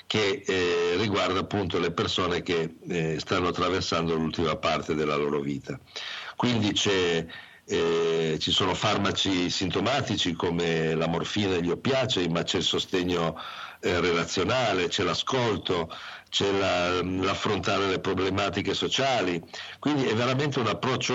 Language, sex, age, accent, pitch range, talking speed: Italian, male, 50-69, native, 85-105 Hz, 135 wpm